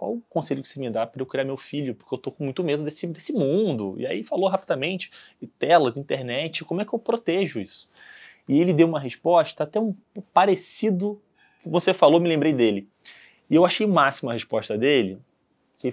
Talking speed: 215 wpm